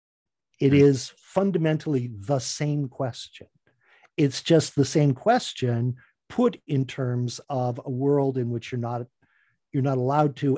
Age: 50-69